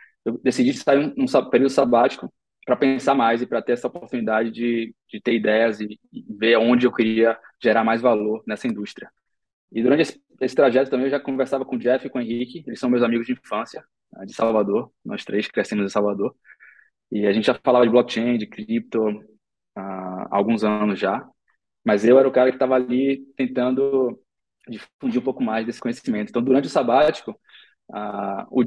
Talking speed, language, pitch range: 190 wpm, Portuguese, 115-135 Hz